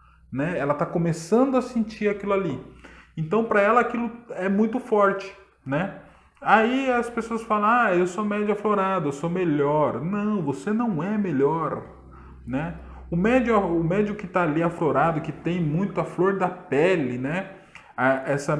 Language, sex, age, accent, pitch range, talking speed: Portuguese, male, 20-39, Brazilian, 150-205 Hz, 160 wpm